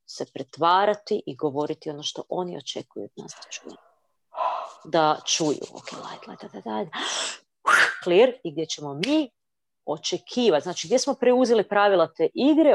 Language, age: Croatian, 40-59